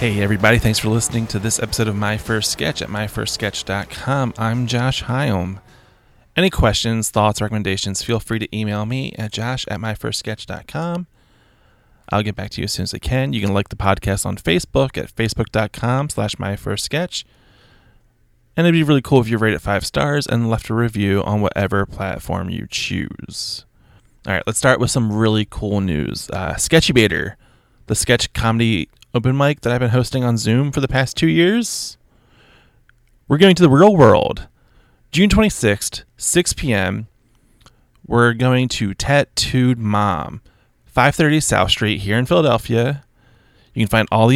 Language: English